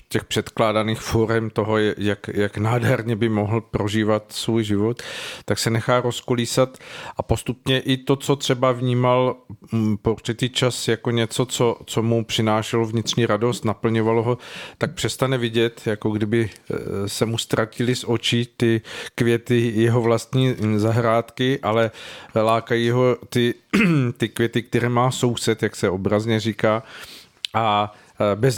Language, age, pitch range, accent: Czech, 40-59, 110-125 Hz, native